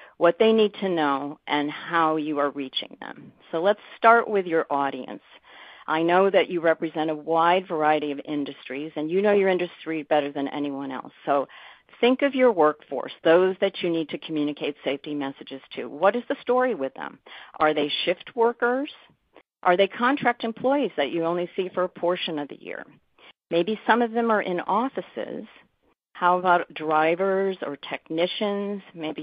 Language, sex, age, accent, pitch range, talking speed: English, female, 50-69, American, 150-200 Hz, 180 wpm